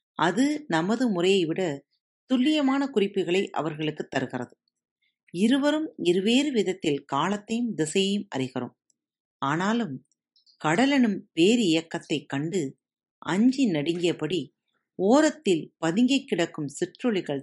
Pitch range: 165-235 Hz